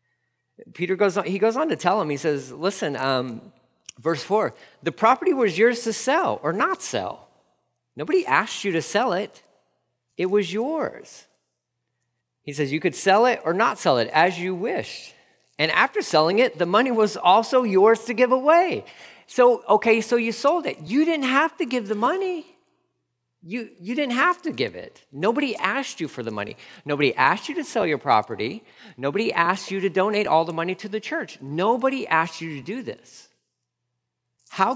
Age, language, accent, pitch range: 40-59, English, American, 145-230 Hz